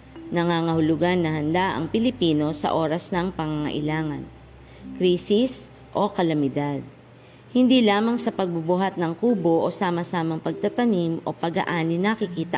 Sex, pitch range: female, 155-200 Hz